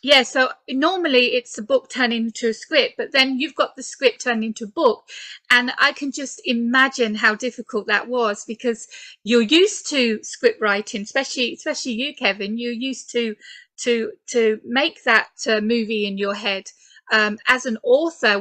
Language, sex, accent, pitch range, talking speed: English, female, British, 215-260 Hz, 180 wpm